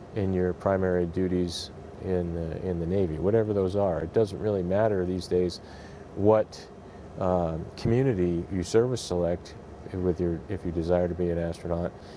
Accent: American